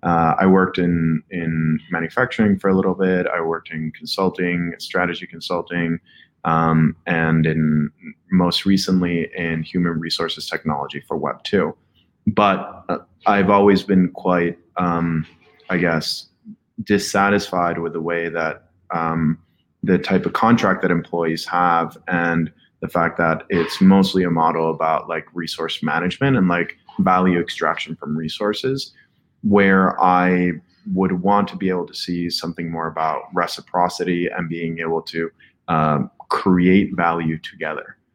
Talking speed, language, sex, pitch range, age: 140 wpm, English, male, 85-95 Hz, 20-39